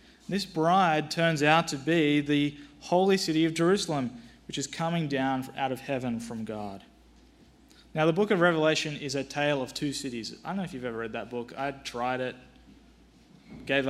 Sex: male